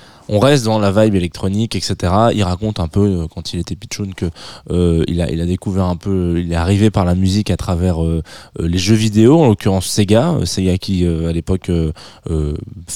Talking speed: 220 wpm